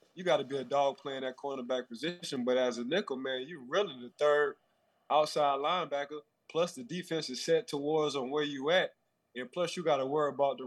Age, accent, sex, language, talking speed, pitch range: 20-39, American, male, English, 220 wpm, 135-165 Hz